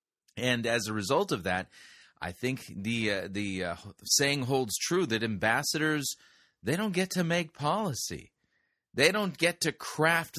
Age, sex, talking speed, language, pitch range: 30-49, male, 160 wpm, English, 100-135 Hz